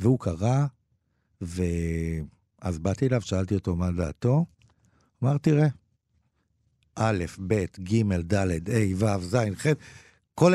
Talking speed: 115 wpm